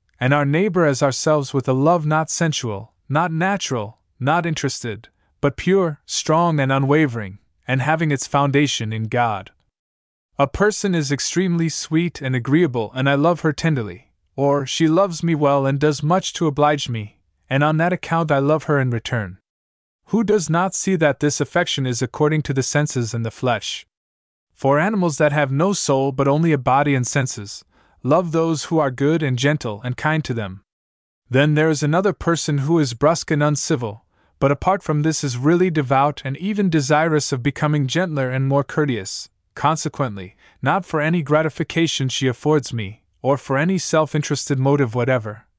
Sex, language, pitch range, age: male, English, 120-160 Hz, 20-39